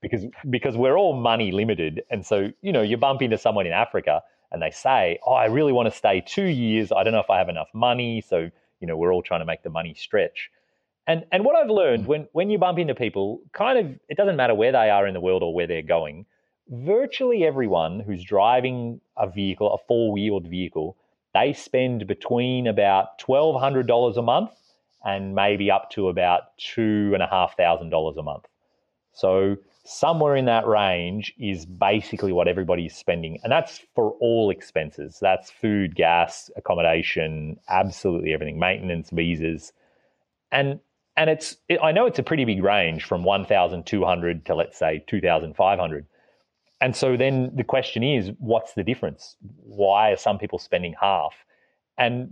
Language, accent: English, Australian